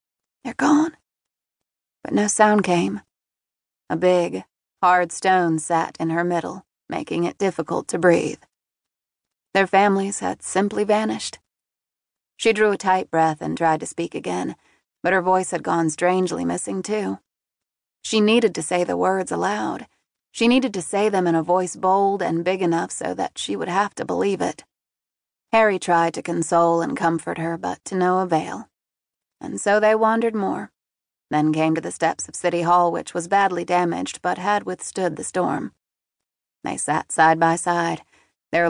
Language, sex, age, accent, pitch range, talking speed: English, female, 30-49, American, 165-190 Hz, 165 wpm